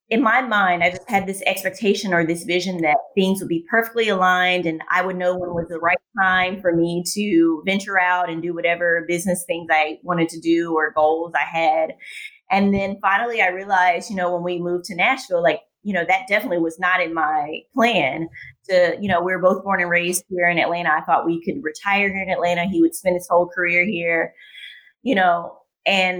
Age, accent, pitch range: 20-39, American, 175-205 Hz